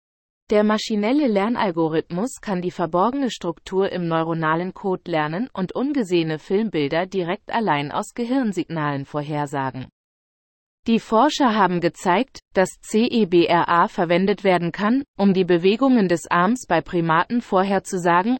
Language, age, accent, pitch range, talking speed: German, 30-49, German, 165-220 Hz, 115 wpm